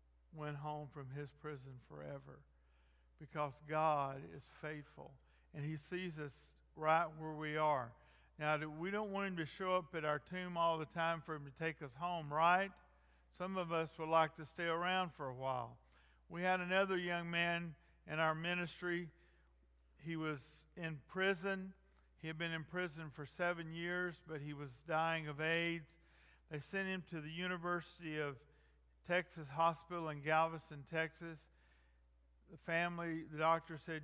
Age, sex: 50-69, male